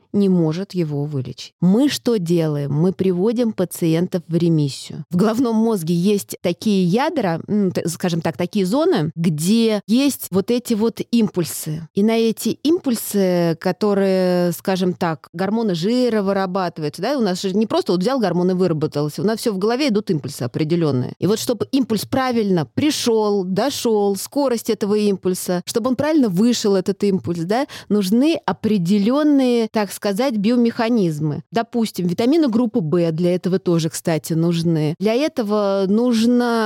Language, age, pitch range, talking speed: Russian, 30-49, 175-225 Hz, 150 wpm